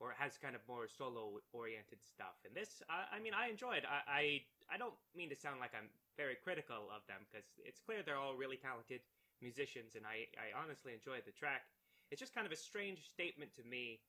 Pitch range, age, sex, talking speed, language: 125-175 Hz, 20-39, male, 220 wpm, English